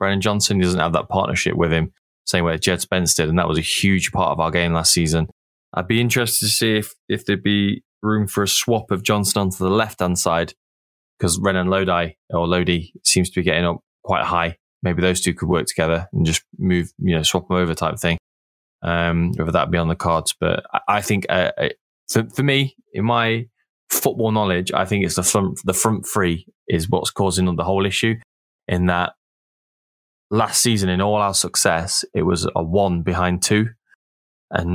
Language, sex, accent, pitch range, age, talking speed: English, male, British, 85-105 Hz, 20-39, 210 wpm